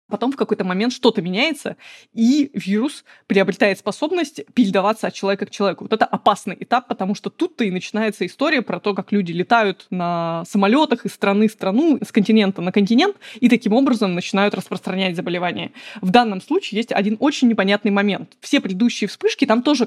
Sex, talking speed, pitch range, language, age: female, 180 wpm, 195-240 Hz, Russian, 20-39